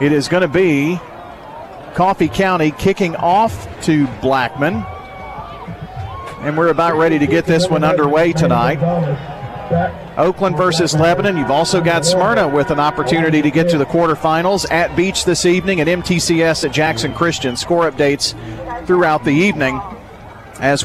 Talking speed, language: 145 wpm, English